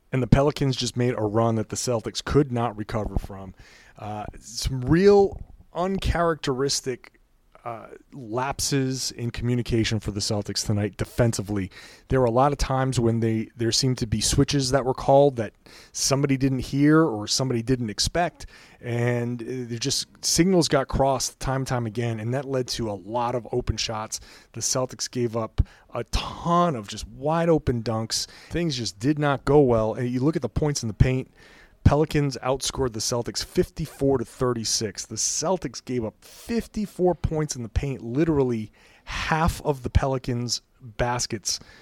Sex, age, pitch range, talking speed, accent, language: male, 30-49, 110-135 Hz, 170 wpm, American, English